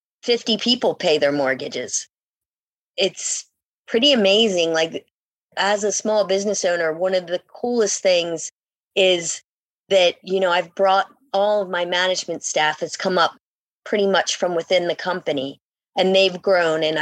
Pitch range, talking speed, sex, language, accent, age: 175-205 Hz, 150 wpm, female, English, American, 30-49